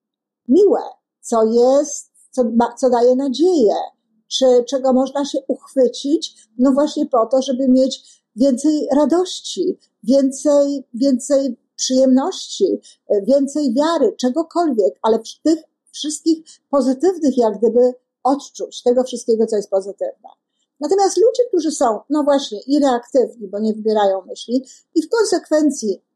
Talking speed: 120 wpm